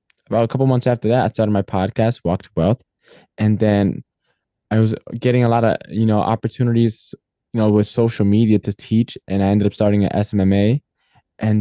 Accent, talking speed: American, 195 wpm